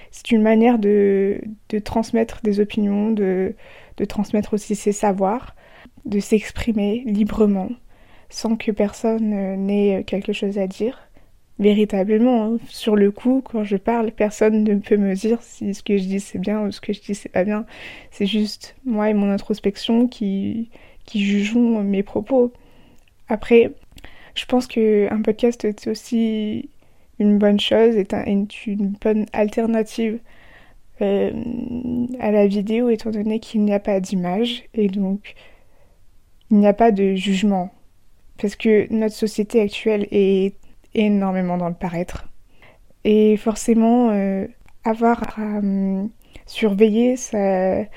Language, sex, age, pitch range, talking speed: French, female, 20-39, 205-230 Hz, 145 wpm